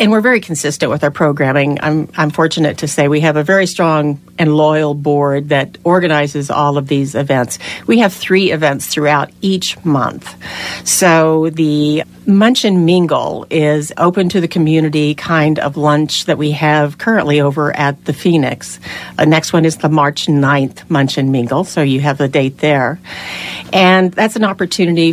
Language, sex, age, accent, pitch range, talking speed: English, female, 50-69, American, 150-180 Hz, 175 wpm